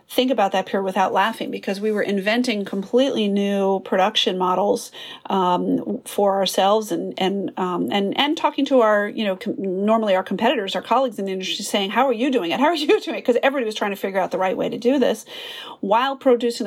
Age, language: 40-59, English